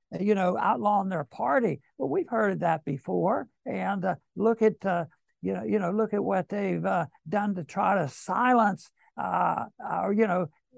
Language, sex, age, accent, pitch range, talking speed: English, male, 60-79, American, 180-220 Hz, 190 wpm